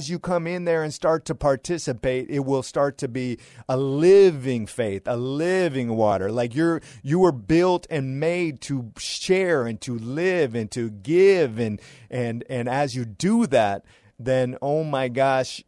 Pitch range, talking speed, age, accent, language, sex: 120-145 Hz, 175 wpm, 30-49, American, English, male